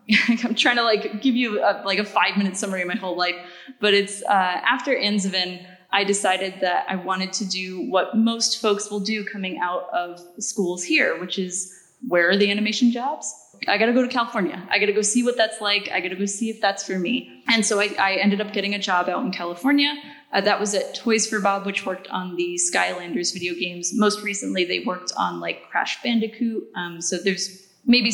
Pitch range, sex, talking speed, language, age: 185-220 Hz, female, 225 wpm, English, 20-39